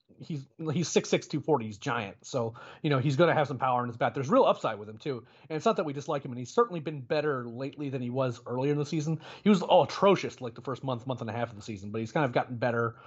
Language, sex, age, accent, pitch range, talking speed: English, male, 30-49, American, 120-150 Hz, 310 wpm